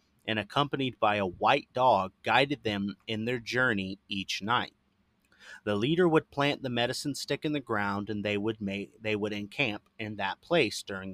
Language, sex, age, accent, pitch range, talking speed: English, male, 30-49, American, 100-130 Hz, 185 wpm